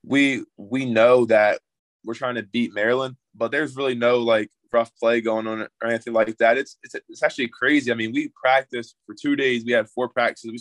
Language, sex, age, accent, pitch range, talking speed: English, male, 20-39, American, 110-125 Hz, 220 wpm